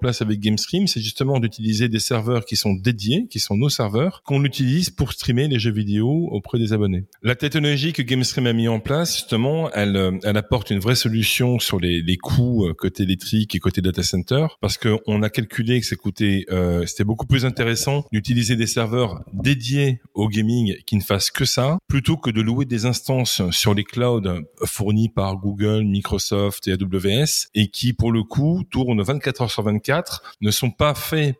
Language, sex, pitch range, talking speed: French, male, 105-130 Hz, 190 wpm